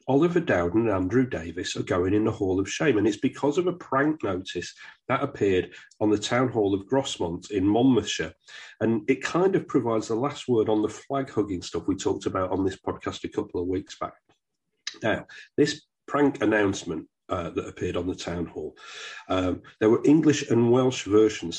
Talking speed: 195 wpm